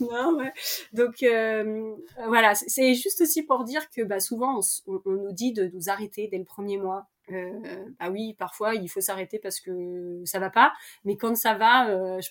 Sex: female